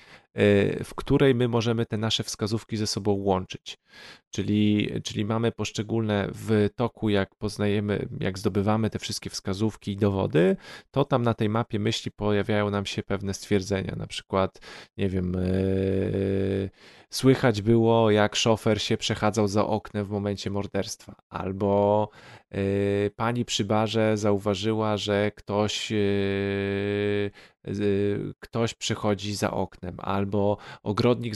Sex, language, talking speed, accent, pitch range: male, Polish, 130 wpm, native, 100-115 Hz